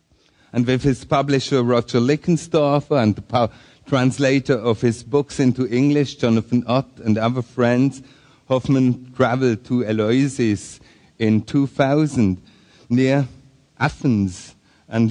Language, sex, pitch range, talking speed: English, male, 110-135 Hz, 115 wpm